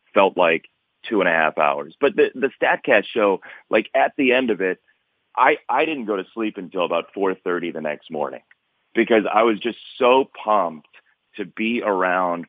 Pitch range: 95-125 Hz